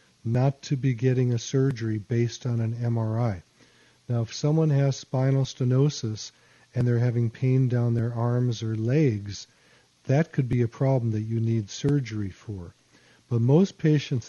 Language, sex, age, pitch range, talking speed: English, male, 50-69, 110-130 Hz, 160 wpm